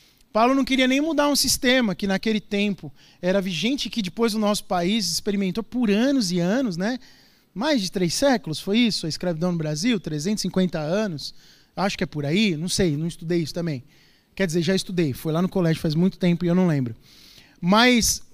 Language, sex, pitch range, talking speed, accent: Portuguese, male, 185-250 Hz, 205 wpm, Brazilian